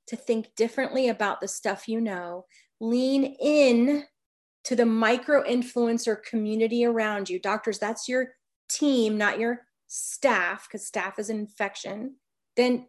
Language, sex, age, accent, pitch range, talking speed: English, female, 30-49, American, 210-255 Hz, 135 wpm